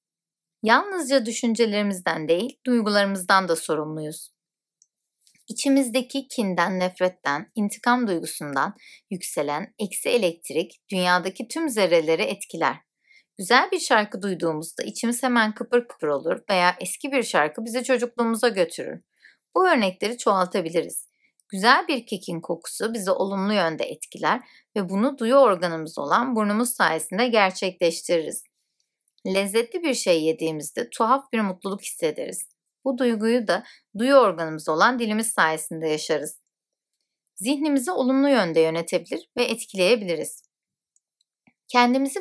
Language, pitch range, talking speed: Turkish, 175-245 Hz, 110 wpm